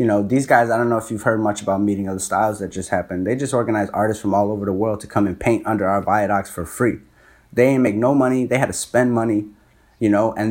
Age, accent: 20-39, American